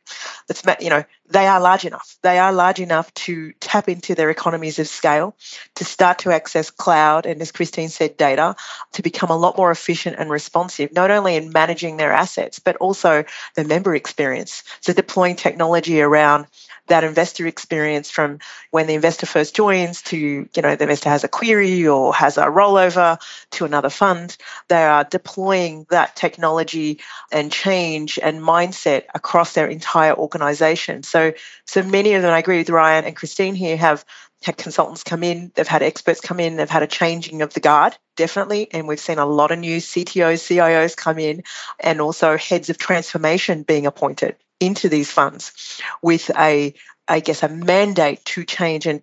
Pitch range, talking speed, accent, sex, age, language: 155-180 Hz, 180 wpm, Australian, female, 40-59, English